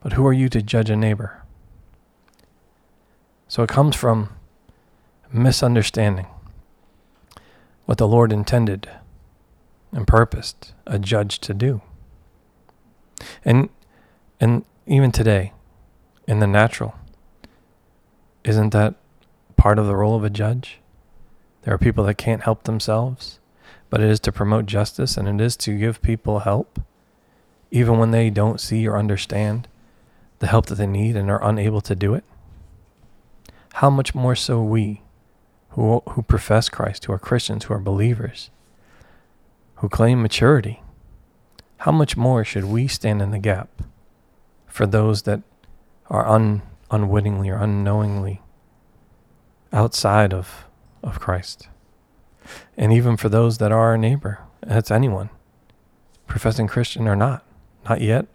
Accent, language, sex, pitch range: American, English, male, 100-115 Hz